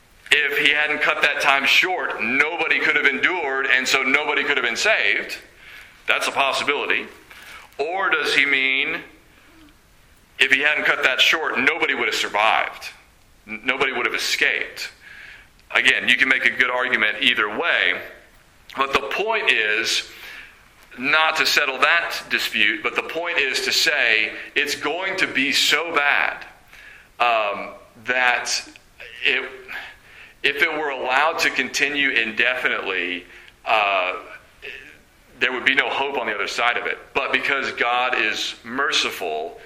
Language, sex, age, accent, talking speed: English, male, 40-59, American, 145 wpm